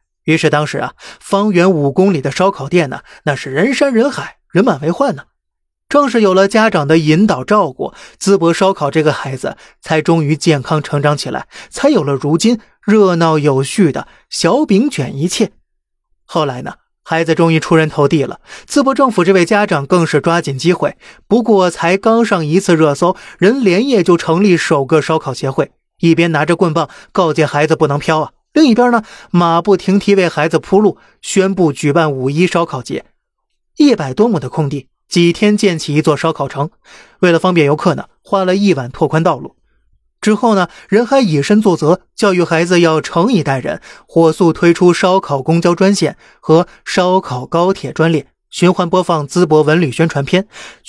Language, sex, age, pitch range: Chinese, male, 30-49, 155-195 Hz